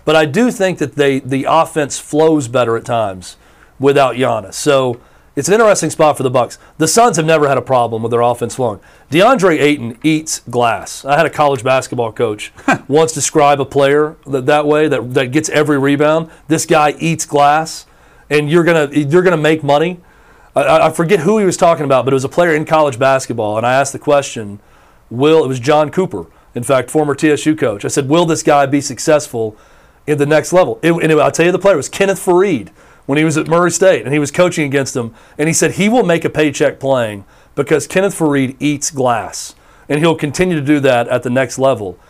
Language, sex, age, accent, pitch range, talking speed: English, male, 40-59, American, 130-160 Hz, 220 wpm